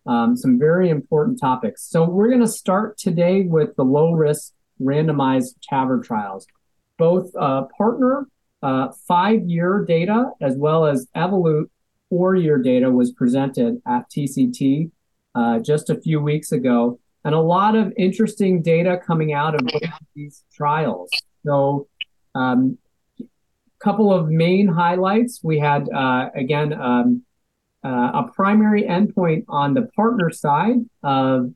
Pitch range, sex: 135-185 Hz, male